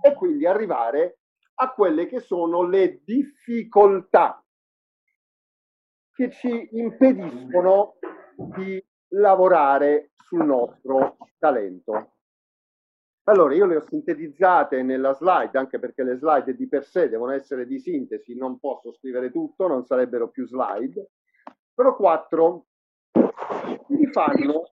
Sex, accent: male, native